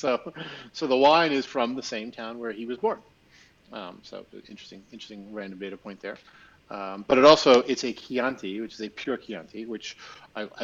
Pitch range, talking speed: 105-125 Hz, 195 wpm